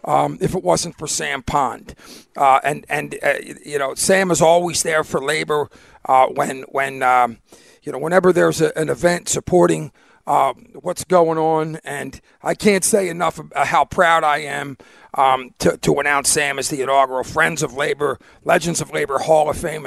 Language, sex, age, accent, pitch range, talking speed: English, male, 50-69, American, 145-185 Hz, 185 wpm